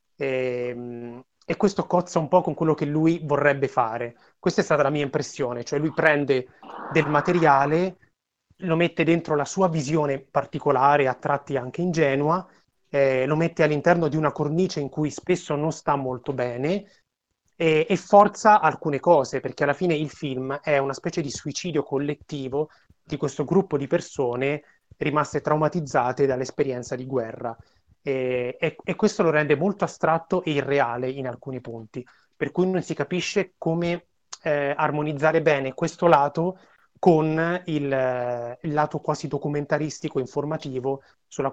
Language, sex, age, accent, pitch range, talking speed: Italian, male, 30-49, native, 135-165 Hz, 150 wpm